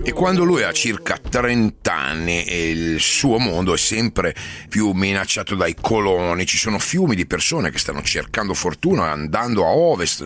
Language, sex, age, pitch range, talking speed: Italian, male, 40-59, 85-115 Hz, 170 wpm